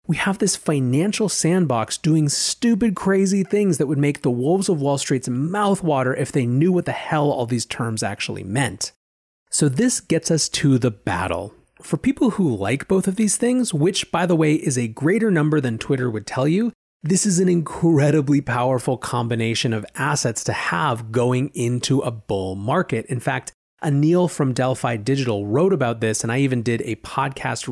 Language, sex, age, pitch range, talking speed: English, male, 30-49, 120-165 Hz, 190 wpm